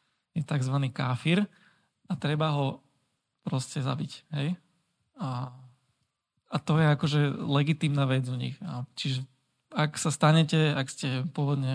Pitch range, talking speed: 135-155 Hz, 135 wpm